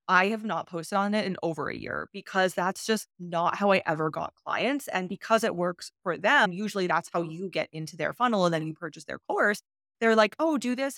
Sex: female